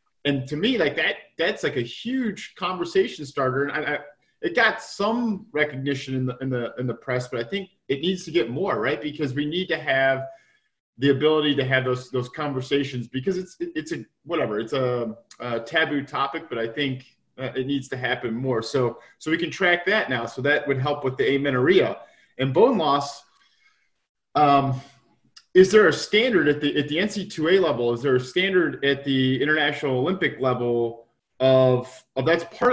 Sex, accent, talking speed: male, American, 195 wpm